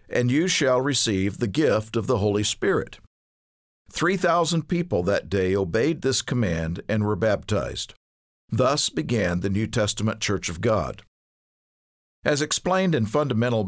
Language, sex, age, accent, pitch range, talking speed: English, male, 50-69, American, 95-125 Hz, 145 wpm